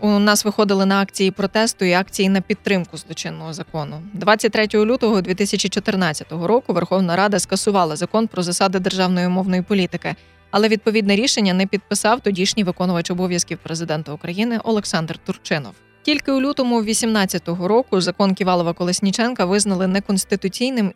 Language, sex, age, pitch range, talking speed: Ukrainian, female, 20-39, 180-210 Hz, 130 wpm